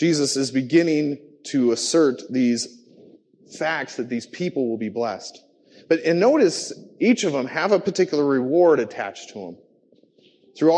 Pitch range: 135-215 Hz